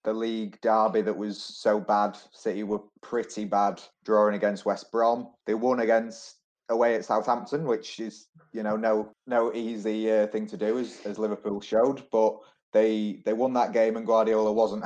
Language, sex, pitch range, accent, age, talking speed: English, male, 100-110 Hz, British, 20-39, 180 wpm